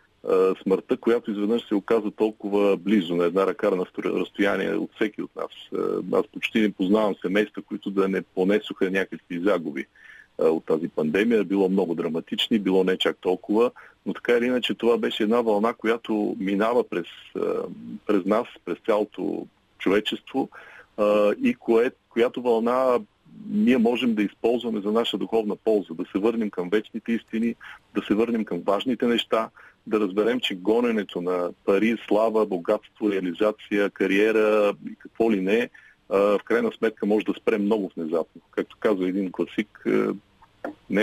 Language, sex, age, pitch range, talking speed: Bulgarian, male, 40-59, 100-115 Hz, 150 wpm